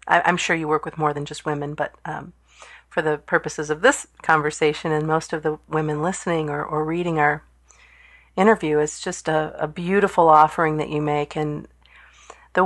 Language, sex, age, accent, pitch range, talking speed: English, female, 40-59, American, 150-175 Hz, 190 wpm